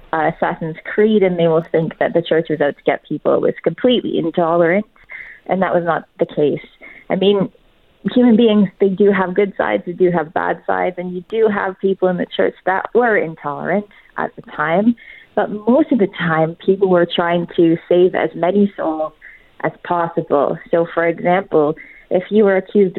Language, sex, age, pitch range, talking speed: English, female, 30-49, 165-205 Hz, 195 wpm